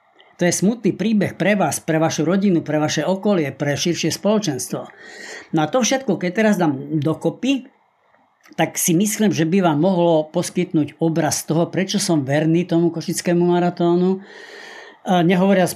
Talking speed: 150 wpm